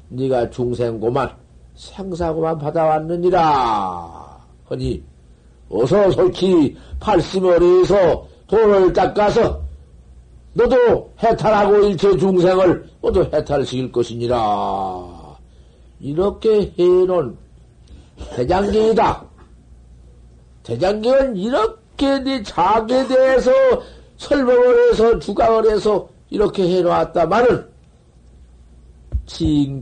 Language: Korean